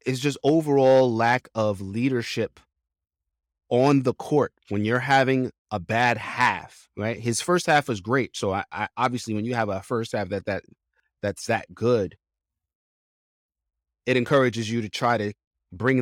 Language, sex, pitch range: English, male, 95-130 Hz